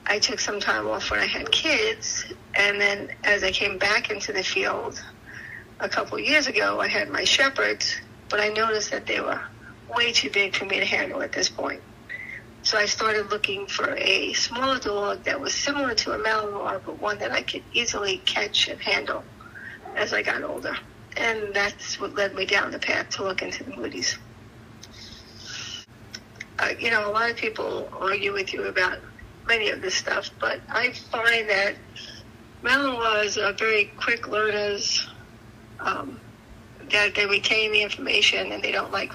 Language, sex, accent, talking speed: English, female, American, 180 wpm